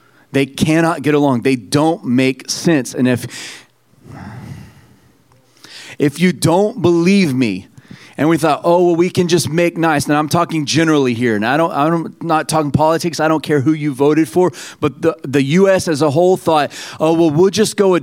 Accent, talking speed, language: American, 185 wpm, English